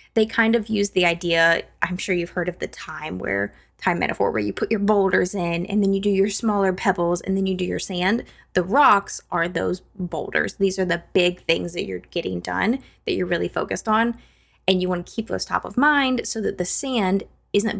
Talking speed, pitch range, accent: 230 wpm, 180-230 Hz, American